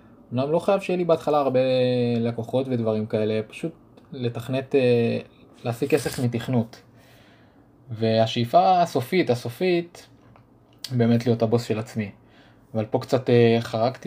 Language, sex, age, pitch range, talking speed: Hebrew, male, 20-39, 115-130 Hz, 75 wpm